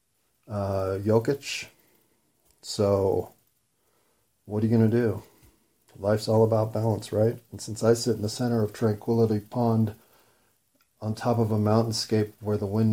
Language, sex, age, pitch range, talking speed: English, male, 40-59, 105-130 Hz, 150 wpm